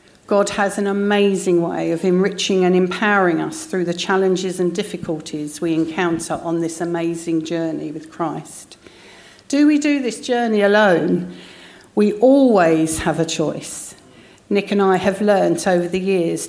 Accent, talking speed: British, 155 wpm